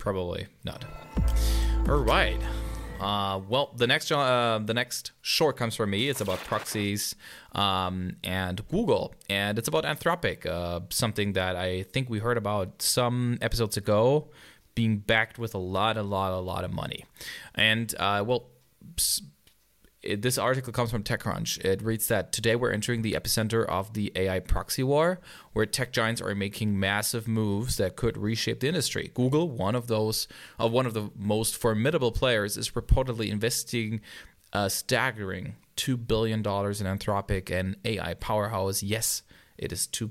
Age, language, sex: 20-39, English, male